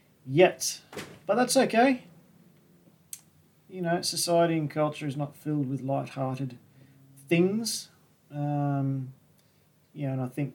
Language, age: English, 40-59